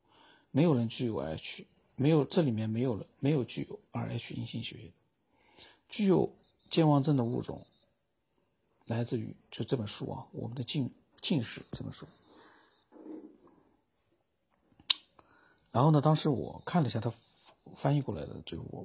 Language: Chinese